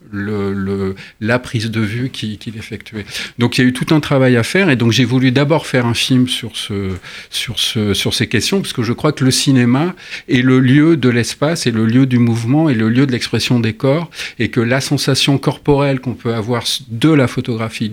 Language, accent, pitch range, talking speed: French, French, 105-130 Hz, 230 wpm